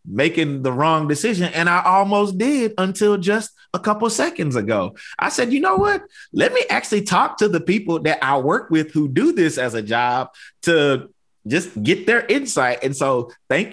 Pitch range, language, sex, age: 125-180 Hz, English, male, 20-39